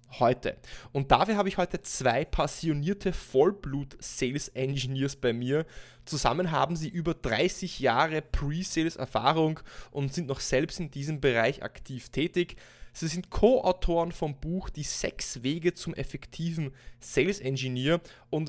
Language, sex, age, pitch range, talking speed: German, male, 20-39, 125-160 Hz, 140 wpm